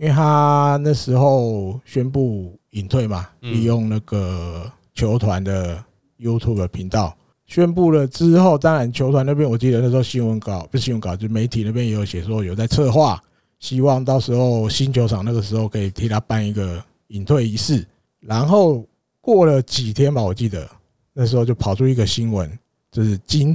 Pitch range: 105-135 Hz